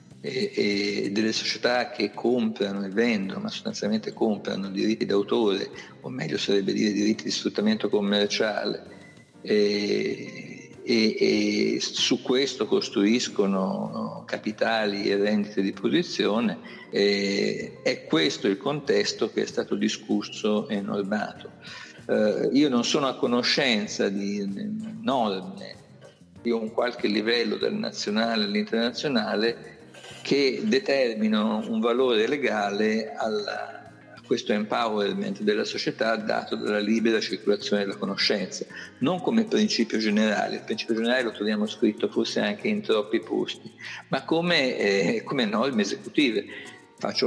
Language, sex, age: Italian, male, 50-69